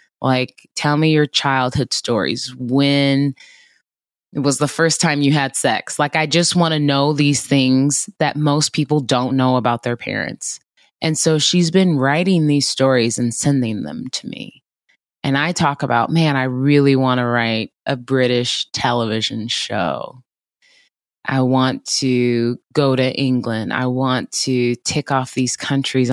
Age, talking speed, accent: 20-39, 160 wpm, American